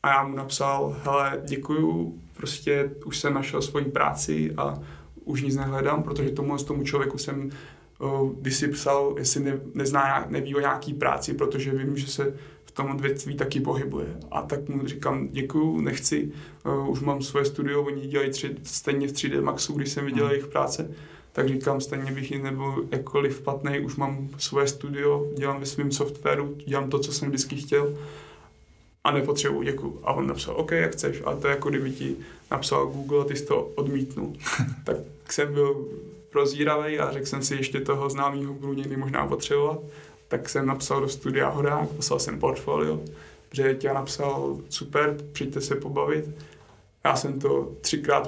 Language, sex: Czech, male